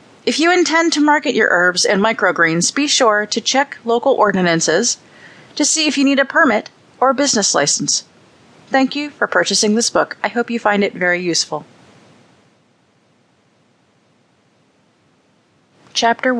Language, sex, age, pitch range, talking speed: English, female, 30-49, 190-265 Hz, 145 wpm